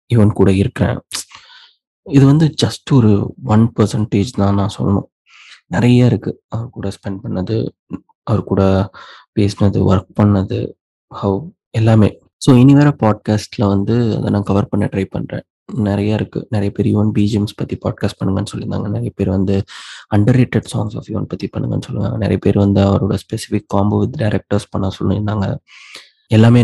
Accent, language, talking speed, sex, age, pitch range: native, Tamil, 135 wpm, male, 20-39, 100-115 Hz